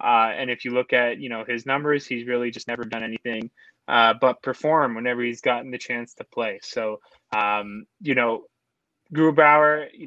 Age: 20-39